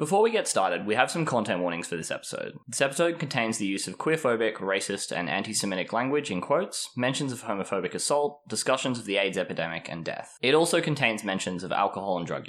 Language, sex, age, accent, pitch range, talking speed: English, male, 10-29, Australian, 95-140 Hz, 210 wpm